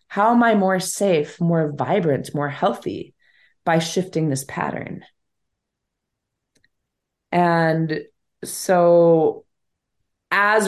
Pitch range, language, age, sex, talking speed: 150-185 Hz, English, 20-39, female, 90 wpm